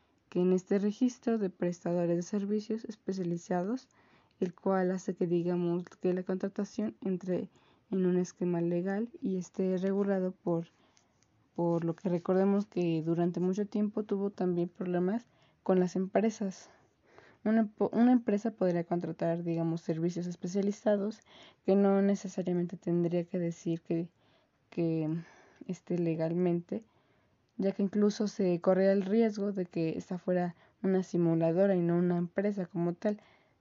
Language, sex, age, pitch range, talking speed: Spanish, female, 20-39, 175-200 Hz, 135 wpm